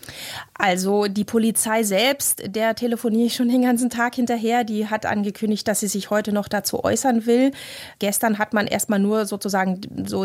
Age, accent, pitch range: 30-49, German, 180-215 Hz